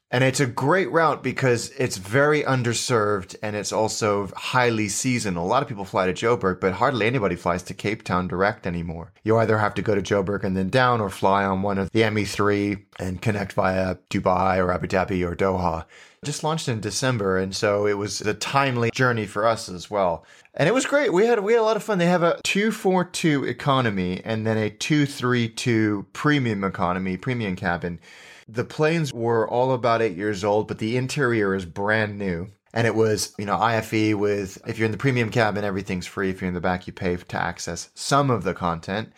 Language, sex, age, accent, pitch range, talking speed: English, male, 30-49, American, 95-125 Hz, 215 wpm